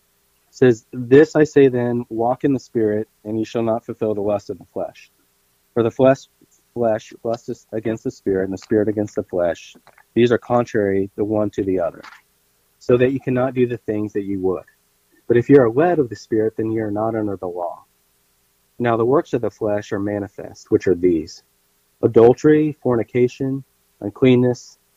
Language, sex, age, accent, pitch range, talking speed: English, male, 30-49, American, 105-125 Hz, 190 wpm